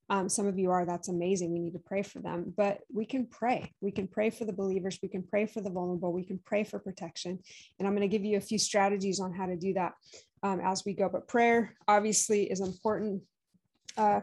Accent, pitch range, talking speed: American, 190-225 Hz, 245 wpm